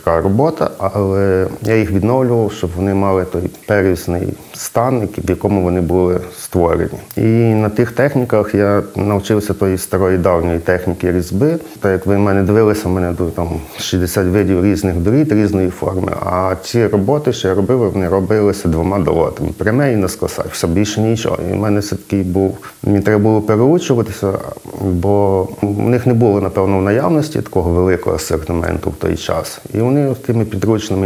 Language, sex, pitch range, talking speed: Ukrainian, male, 90-105 Hz, 160 wpm